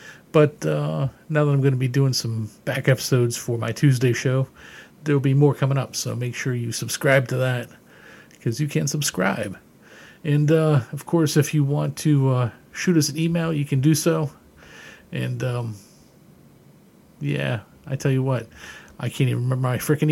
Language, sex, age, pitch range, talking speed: English, male, 40-59, 120-155 Hz, 190 wpm